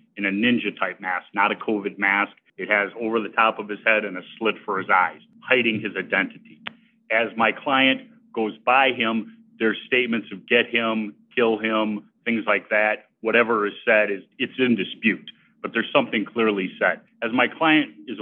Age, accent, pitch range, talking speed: 40-59, American, 105-135 Hz, 190 wpm